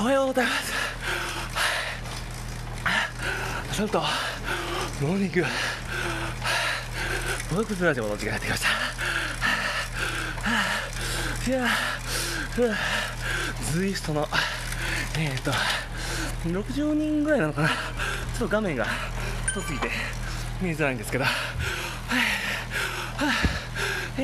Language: Japanese